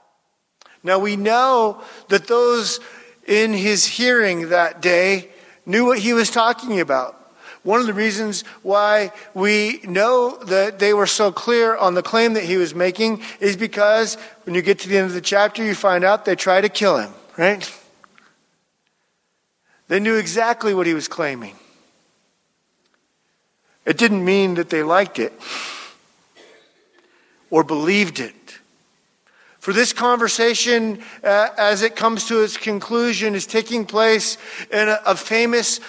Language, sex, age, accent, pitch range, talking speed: English, male, 50-69, American, 185-225 Hz, 150 wpm